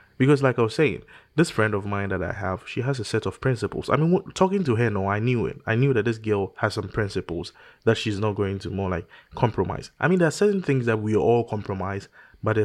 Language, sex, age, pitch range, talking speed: English, male, 20-39, 100-135 Hz, 260 wpm